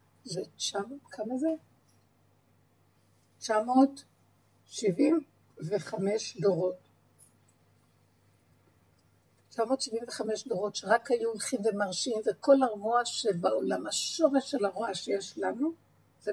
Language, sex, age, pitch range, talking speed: Hebrew, female, 60-79, 180-260 Hz, 80 wpm